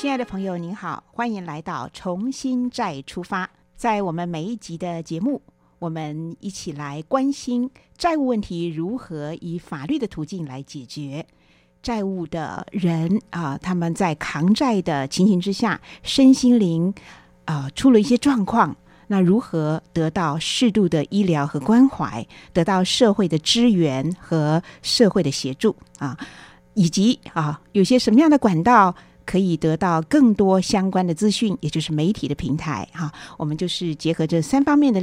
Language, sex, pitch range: Chinese, female, 160-220 Hz